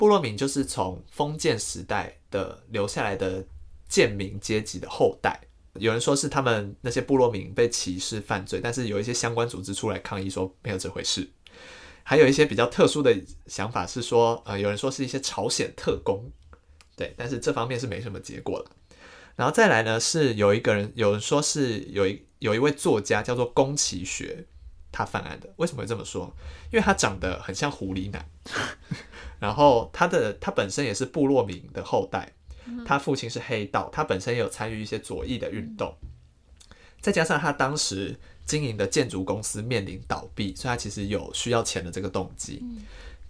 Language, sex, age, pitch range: Chinese, male, 20-39, 95-125 Hz